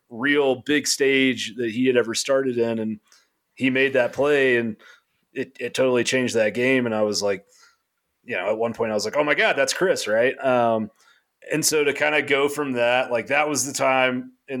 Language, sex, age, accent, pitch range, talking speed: English, male, 30-49, American, 110-130 Hz, 220 wpm